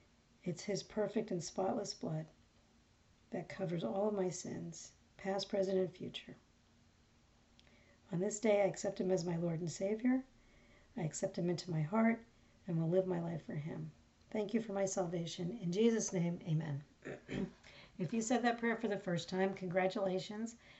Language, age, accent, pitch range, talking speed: English, 50-69, American, 175-210 Hz, 170 wpm